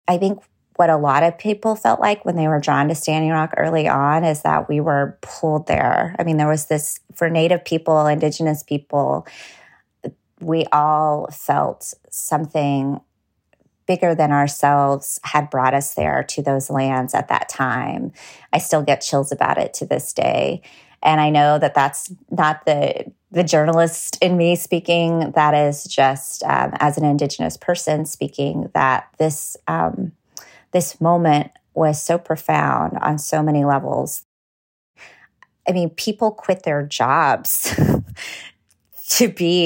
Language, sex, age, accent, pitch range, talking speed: English, female, 30-49, American, 145-170 Hz, 155 wpm